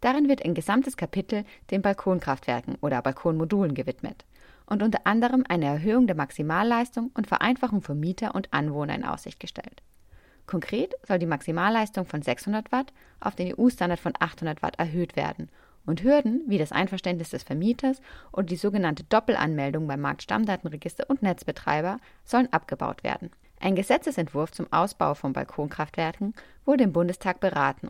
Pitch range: 160-220 Hz